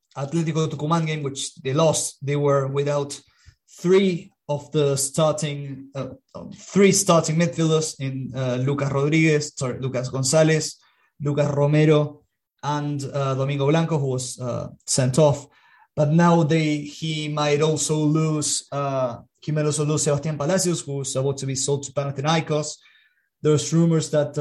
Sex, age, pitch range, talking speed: male, 20-39, 140-155 Hz, 145 wpm